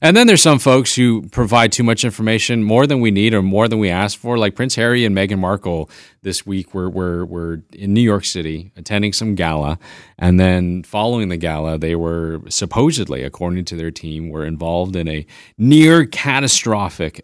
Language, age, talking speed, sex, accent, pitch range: English, 30-49, 190 wpm, male, American, 85-115 Hz